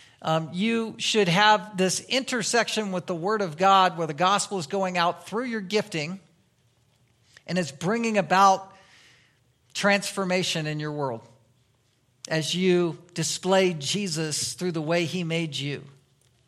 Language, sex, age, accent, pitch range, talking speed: English, male, 50-69, American, 150-195 Hz, 140 wpm